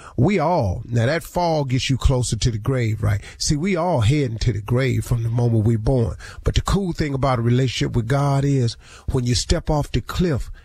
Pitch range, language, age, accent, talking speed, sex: 110-145 Hz, English, 40-59, American, 225 wpm, male